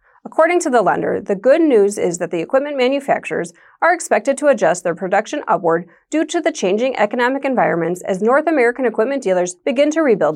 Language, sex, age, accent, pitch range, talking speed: English, female, 30-49, American, 195-295 Hz, 190 wpm